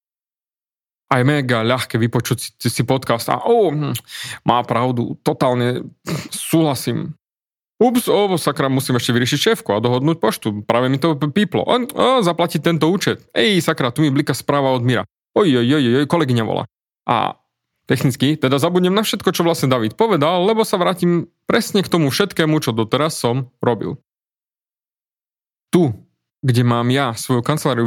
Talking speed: 145 wpm